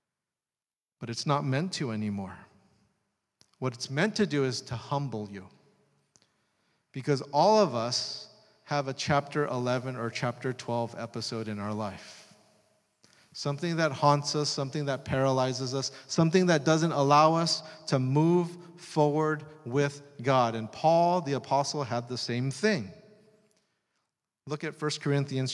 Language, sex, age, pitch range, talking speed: English, male, 40-59, 135-175 Hz, 140 wpm